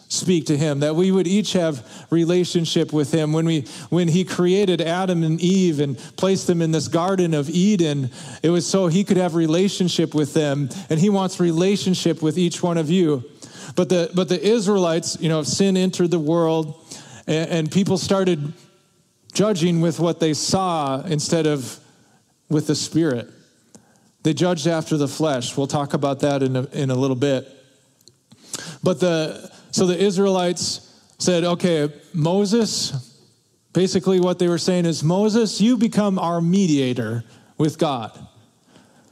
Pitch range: 155-185 Hz